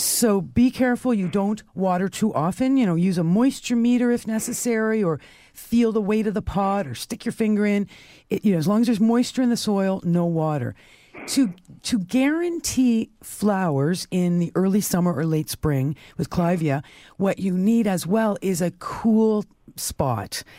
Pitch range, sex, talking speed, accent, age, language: 165-220 Hz, female, 180 wpm, American, 50-69, English